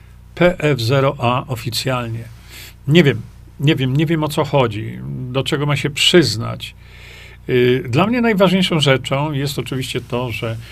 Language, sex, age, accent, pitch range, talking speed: Polish, male, 40-59, native, 115-150 Hz, 145 wpm